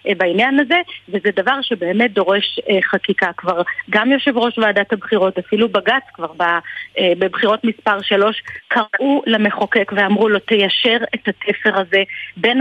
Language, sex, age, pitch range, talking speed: Hebrew, female, 30-49, 200-255 Hz, 150 wpm